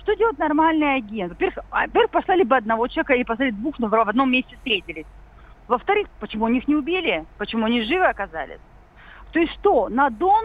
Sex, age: female, 40-59